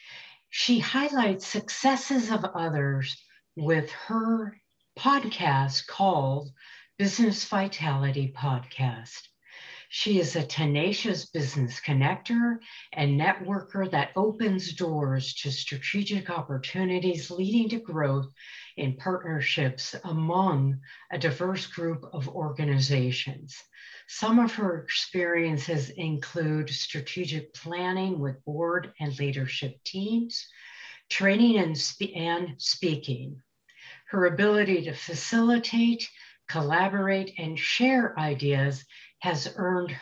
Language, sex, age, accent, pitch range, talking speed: English, female, 50-69, American, 140-195 Hz, 95 wpm